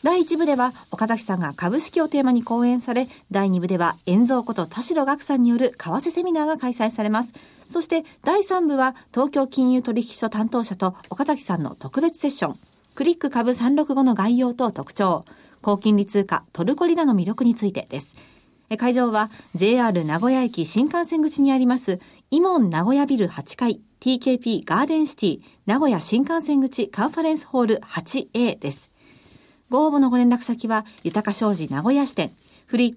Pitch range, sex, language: 215-290 Hz, female, Japanese